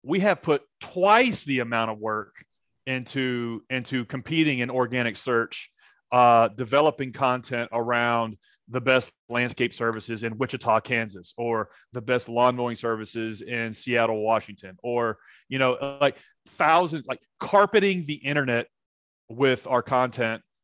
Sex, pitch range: male, 115-140 Hz